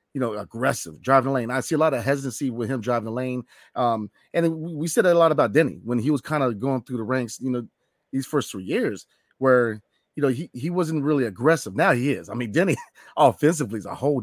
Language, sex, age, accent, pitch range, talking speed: English, male, 30-49, American, 120-150 Hz, 240 wpm